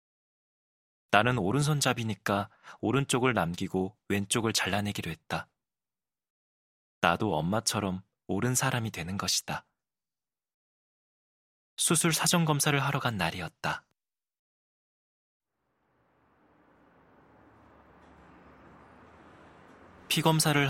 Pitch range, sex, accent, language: 100-135 Hz, male, native, Korean